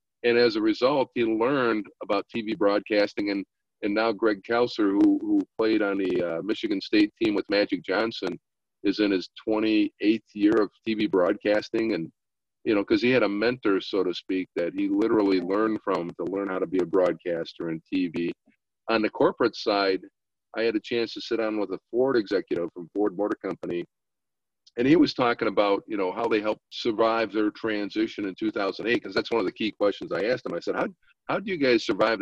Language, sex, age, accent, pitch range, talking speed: English, male, 50-69, American, 100-130 Hz, 205 wpm